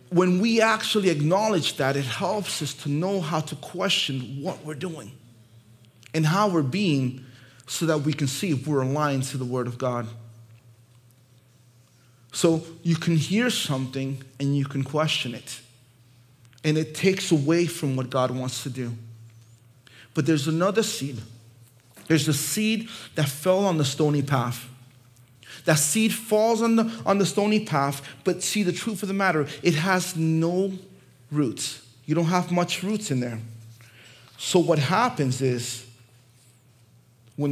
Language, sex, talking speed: English, male, 155 wpm